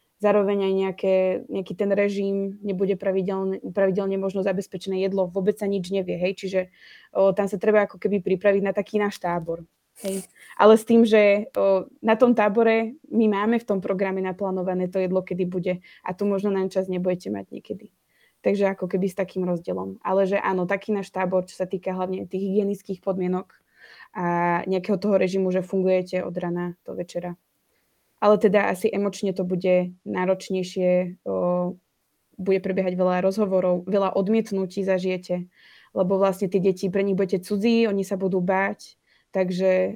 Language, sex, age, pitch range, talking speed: Slovak, female, 20-39, 185-200 Hz, 170 wpm